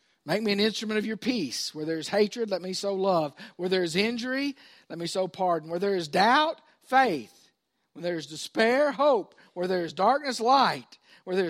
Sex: male